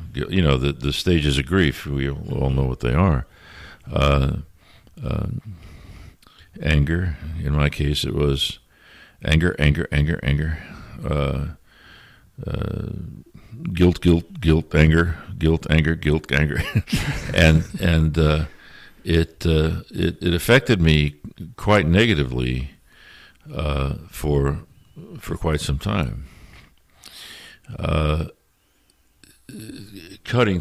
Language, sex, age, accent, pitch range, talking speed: English, male, 60-79, American, 75-90 Hz, 110 wpm